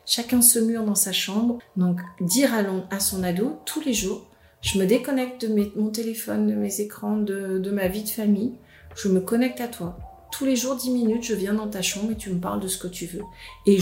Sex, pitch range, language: female, 190-235 Hz, French